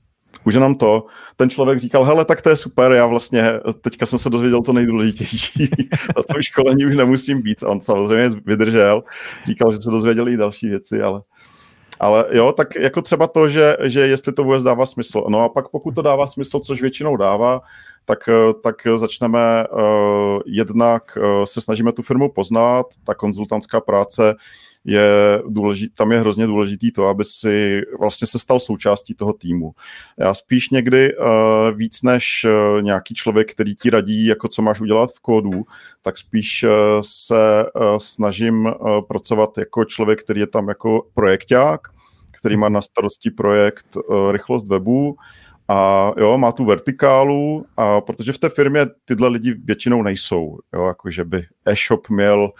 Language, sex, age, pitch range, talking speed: Czech, male, 40-59, 105-125 Hz, 170 wpm